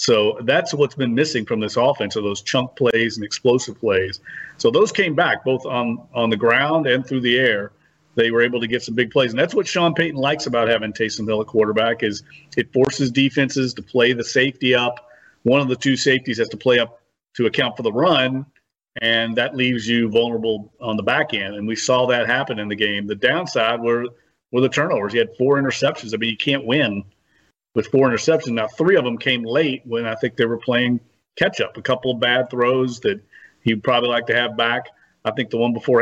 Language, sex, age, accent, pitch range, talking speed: English, male, 40-59, American, 115-135 Hz, 230 wpm